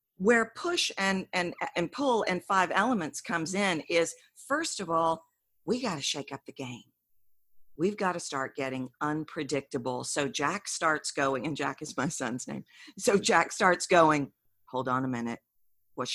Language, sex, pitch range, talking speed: English, female, 140-205 Hz, 175 wpm